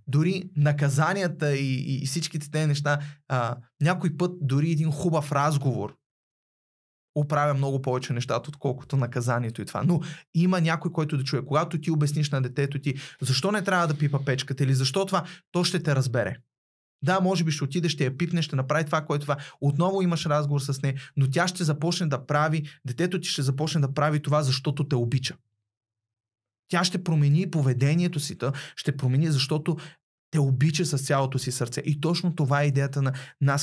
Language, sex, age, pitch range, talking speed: Bulgarian, male, 30-49, 135-155 Hz, 185 wpm